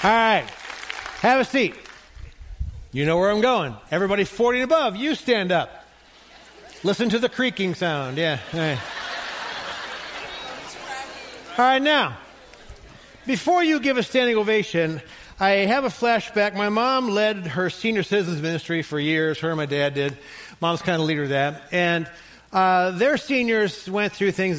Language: English